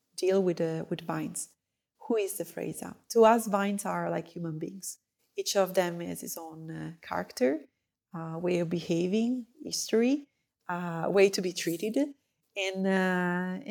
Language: English